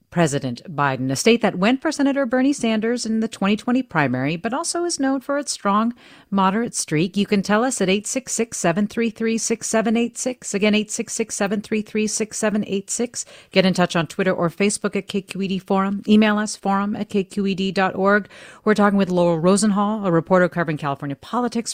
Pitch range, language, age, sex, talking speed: 175-230 Hz, English, 40-59, female, 155 wpm